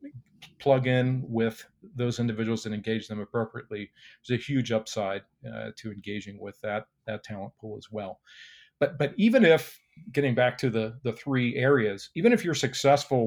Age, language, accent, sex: 40-59, English, American, male